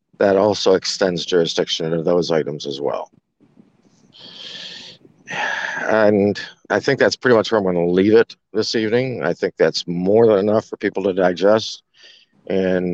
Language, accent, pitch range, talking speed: English, American, 100-140 Hz, 160 wpm